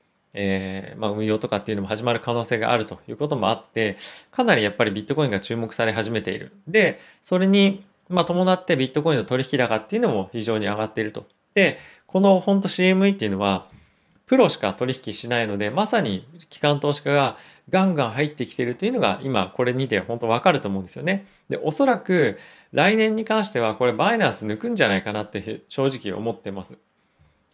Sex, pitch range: male, 105-150 Hz